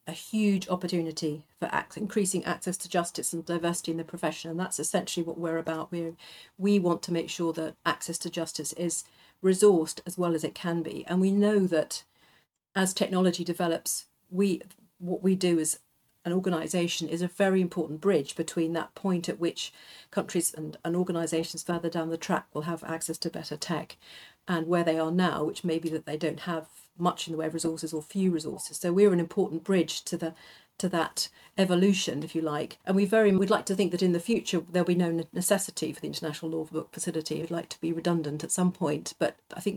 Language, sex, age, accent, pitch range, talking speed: English, female, 50-69, British, 160-185 Hz, 215 wpm